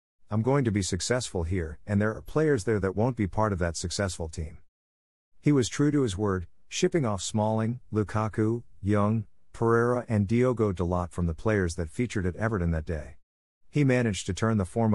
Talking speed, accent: 195 wpm, American